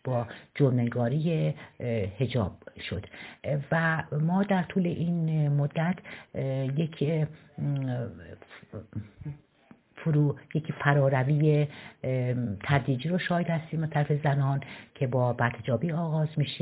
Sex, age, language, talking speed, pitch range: female, 60-79, Persian, 90 wpm, 120-145 Hz